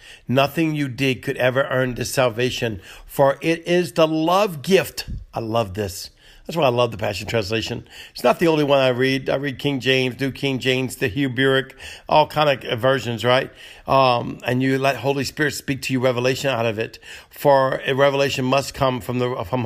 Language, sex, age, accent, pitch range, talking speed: English, male, 60-79, American, 120-145 Hz, 205 wpm